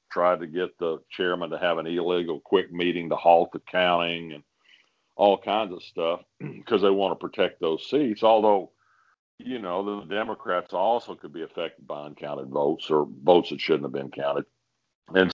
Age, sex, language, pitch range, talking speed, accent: 50-69, male, English, 80-100 Hz, 185 wpm, American